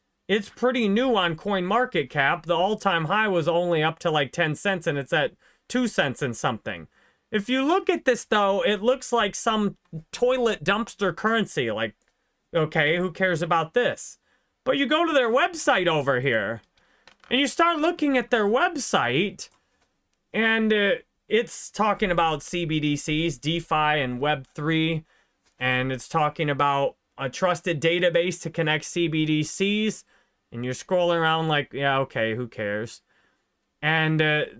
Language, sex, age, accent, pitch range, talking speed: English, male, 30-49, American, 155-220 Hz, 150 wpm